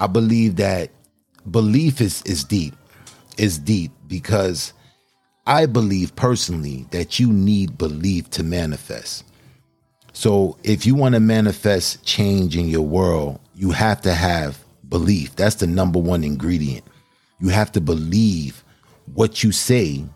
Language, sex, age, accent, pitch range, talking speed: English, male, 40-59, American, 85-105 Hz, 135 wpm